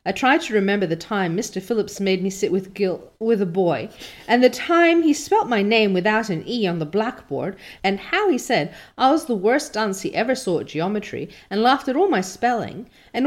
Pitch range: 170-250 Hz